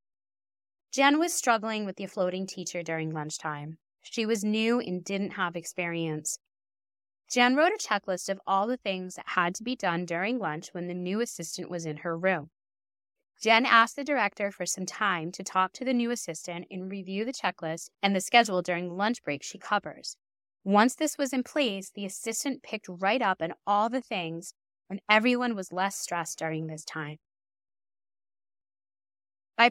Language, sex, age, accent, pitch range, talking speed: English, female, 20-39, American, 175-230 Hz, 175 wpm